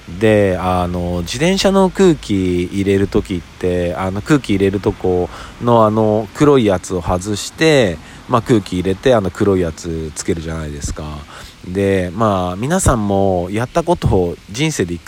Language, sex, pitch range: Japanese, male, 90-120 Hz